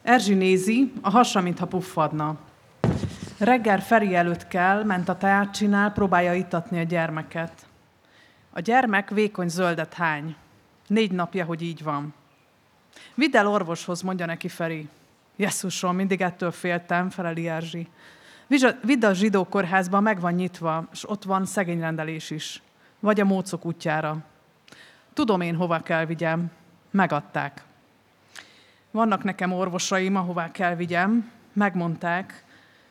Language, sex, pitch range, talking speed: Hungarian, female, 165-200 Hz, 125 wpm